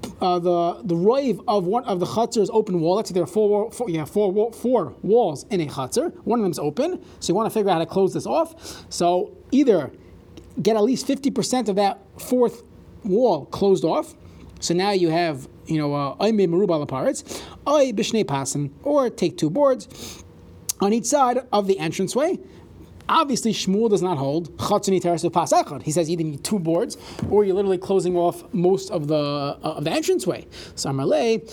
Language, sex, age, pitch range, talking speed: English, male, 30-49, 165-230 Hz, 195 wpm